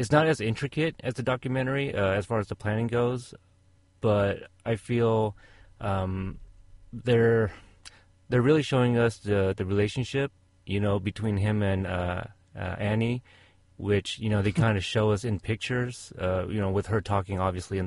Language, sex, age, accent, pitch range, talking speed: English, male, 30-49, American, 95-120 Hz, 175 wpm